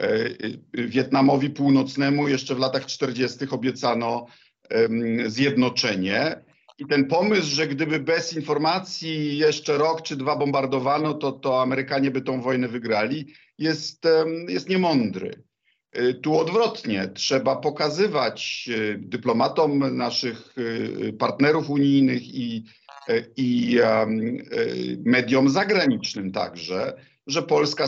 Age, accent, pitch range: 50-69, native, 115-145 Hz